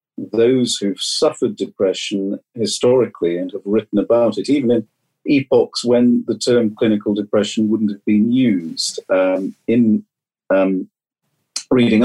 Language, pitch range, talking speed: English, 105-130 Hz, 130 wpm